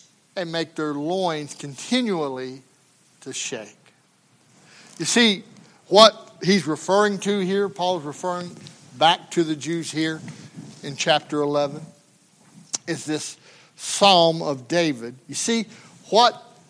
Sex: male